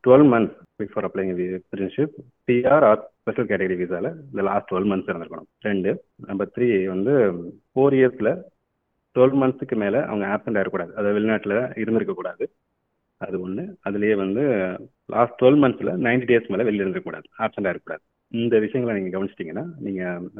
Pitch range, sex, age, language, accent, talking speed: 95-115 Hz, male, 30-49, Tamil, native, 135 wpm